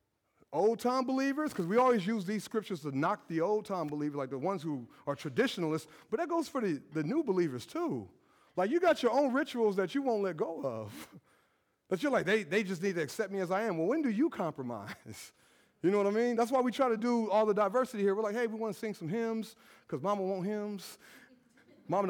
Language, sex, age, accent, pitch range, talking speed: English, male, 30-49, American, 160-240 Hz, 235 wpm